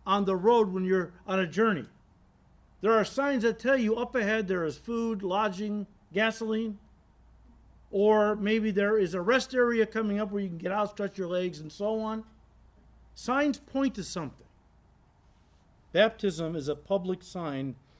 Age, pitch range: 50-69, 115-190 Hz